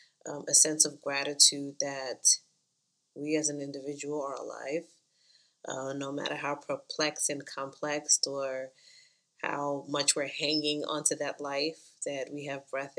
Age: 20-39